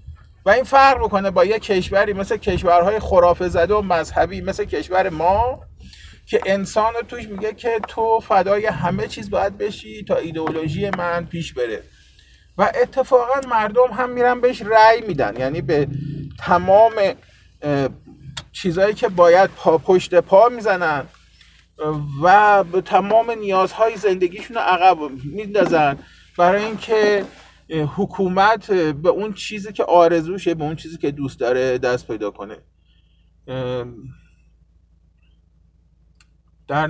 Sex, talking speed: male, 120 wpm